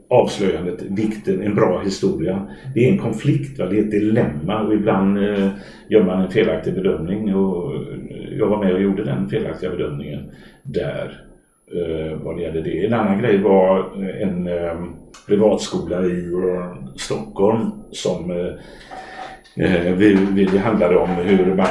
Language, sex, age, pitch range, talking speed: Swedish, male, 60-79, 80-95 Hz, 135 wpm